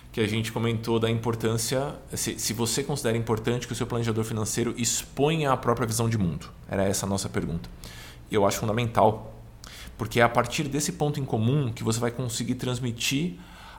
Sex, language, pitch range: male, Portuguese, 105-130 Hz